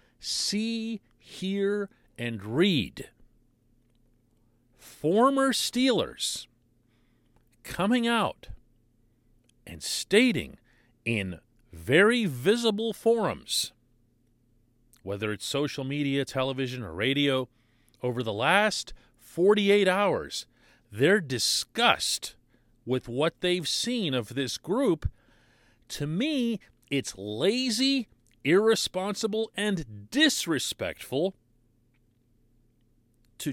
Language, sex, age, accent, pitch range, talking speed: English, male, 40-59, American, 120-200 Hz, 75 wpm